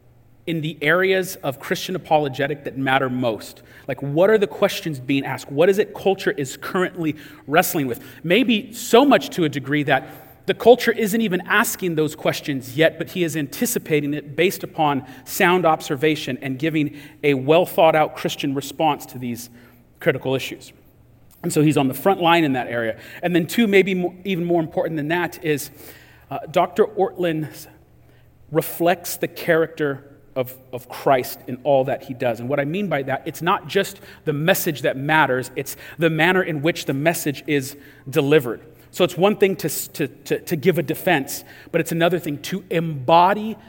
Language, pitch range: English, 130-170 Hz